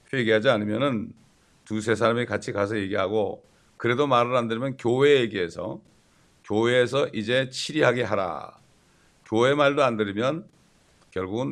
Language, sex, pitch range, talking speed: English, male, 110-135 Hz, 115 wpm